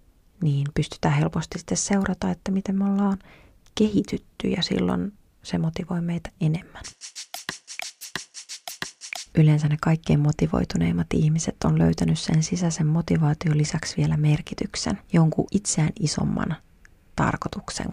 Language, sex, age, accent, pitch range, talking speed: Finnish, female, 30-49, native, 150-190 Hz, 110 wpm